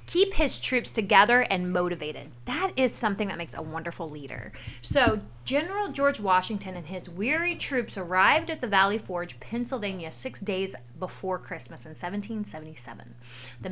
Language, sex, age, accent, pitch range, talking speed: English, female, 30-49, American, 165-240 Hz, 155 wpm